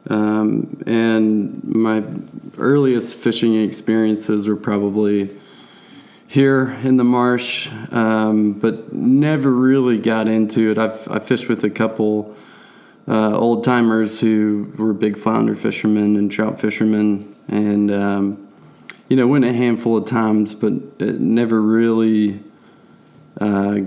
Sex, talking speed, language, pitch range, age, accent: male, 125 wpm, English, 105-115 Hz, 20-39, American